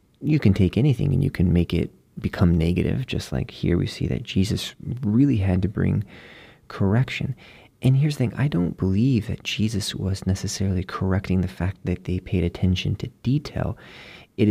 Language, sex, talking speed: English, male, 180 wpm